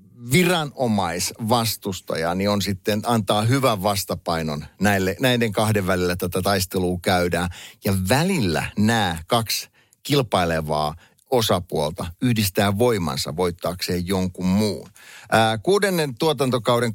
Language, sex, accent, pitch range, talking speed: Finnish, male, native, 90-115 Hz, 90 wpm